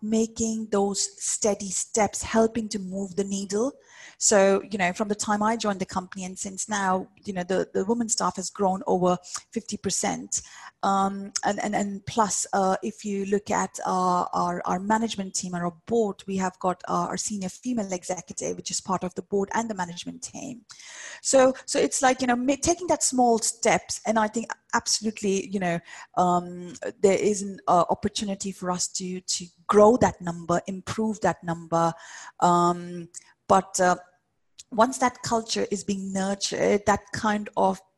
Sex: female